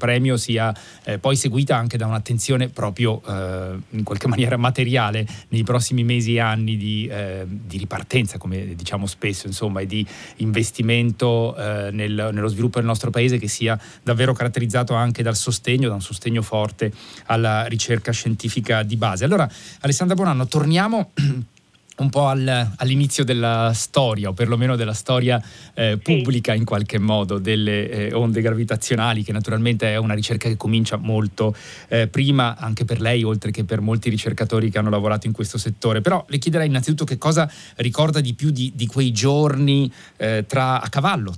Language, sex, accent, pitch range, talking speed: Italian, male, native, 110-125 Hz, 170 wpm